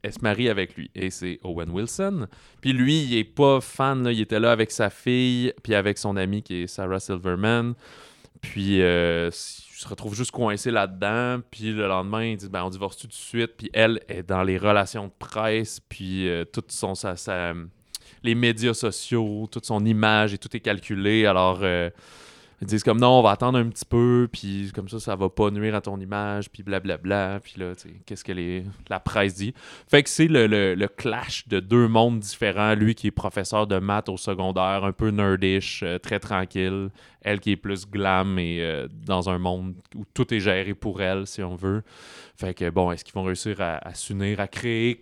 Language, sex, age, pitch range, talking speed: French, male, 20-39, 95-115 Hz, 220 wpm